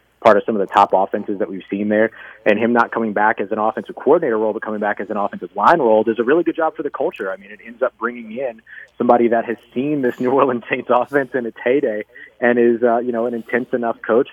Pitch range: 100-115 Hz